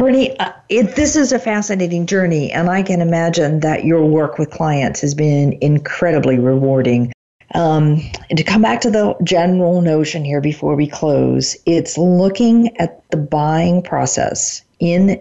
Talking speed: 160 wpm